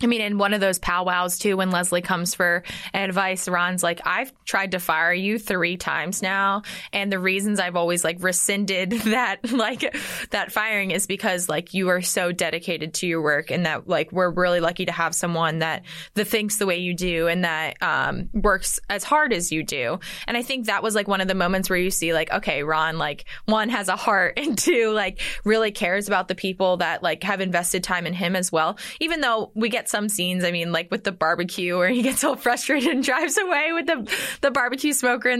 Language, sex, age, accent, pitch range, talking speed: English, female, 20-39, American, 180-230 Hz, 225 wpm